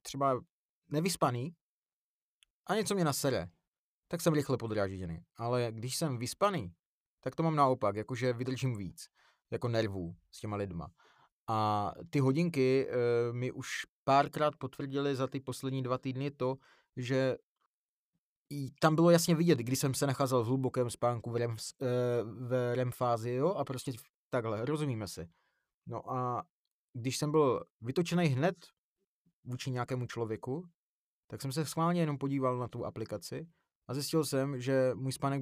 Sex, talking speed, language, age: male, 145 wpm, Czech, 30-49